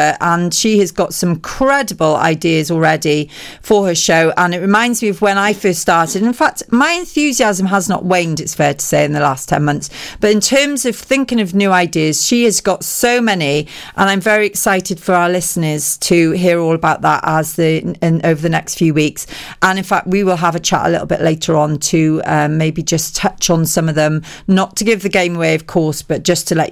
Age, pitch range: 40-59, 160-210 Hz